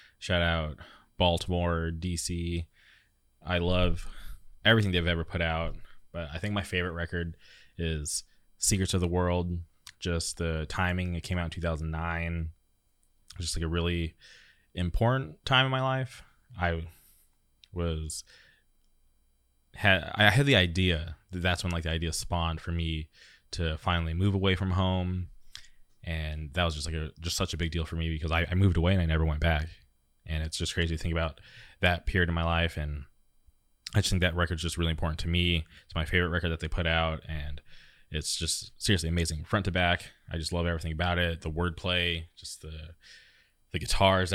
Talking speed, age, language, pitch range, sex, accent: 185 wpm, 20-39, English, 80-90 Hz, male, American